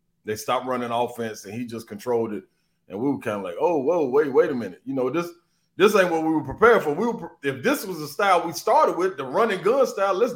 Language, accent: English, American